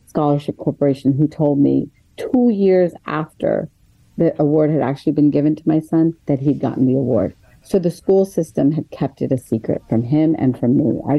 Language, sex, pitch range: English, female, 145-180 Hz